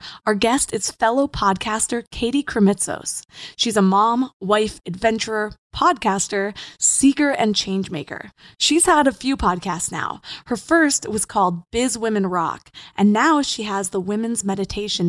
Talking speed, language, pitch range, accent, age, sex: 145 wpm, English, 195-250 Hz, American, 20-39, female